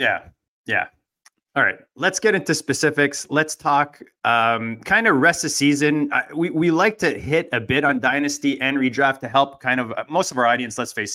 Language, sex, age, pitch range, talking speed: English, male, 20-39, 120-145 Hz, 205 wpm